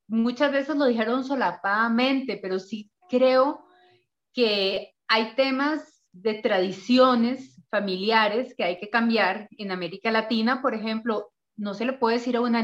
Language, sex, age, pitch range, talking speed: Spanish, female, 30-49, 205-280 Hz, 145 wpm